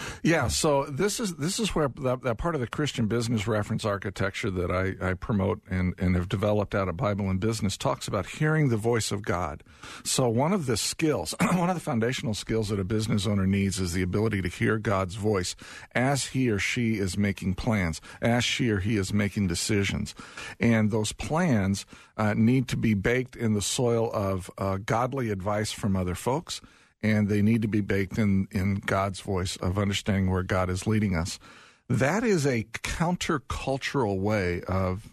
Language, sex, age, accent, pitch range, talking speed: English, male, 50-69, American, 95-120 Hz, 195 wpm